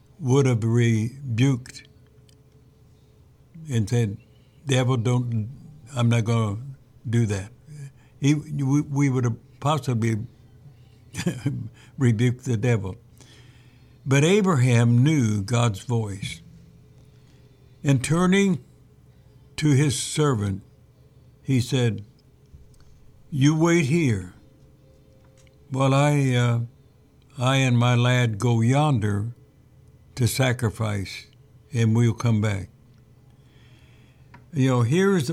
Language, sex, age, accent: English, male, 60-79, American